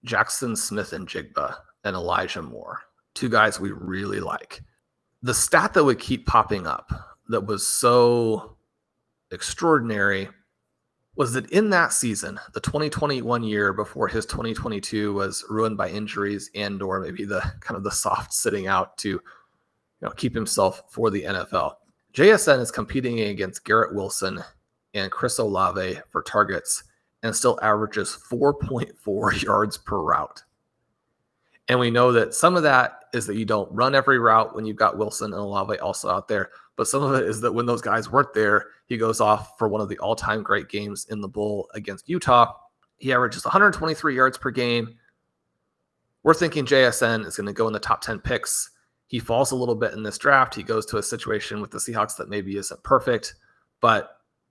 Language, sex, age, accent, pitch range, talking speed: English, male, 30-49, American, 105-130 Hz, 180 wpm